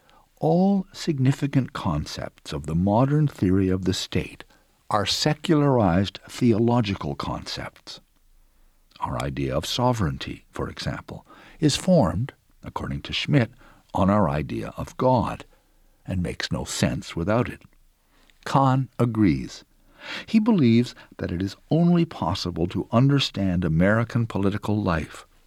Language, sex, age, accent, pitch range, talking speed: English, male, 60-79, American, 95-150 Hz, 120 wpm